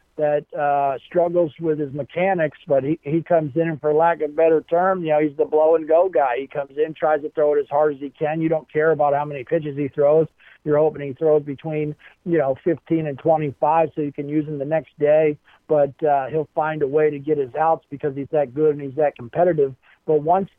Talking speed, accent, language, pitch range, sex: 250 wpm, American, English, 145-175 Hz, male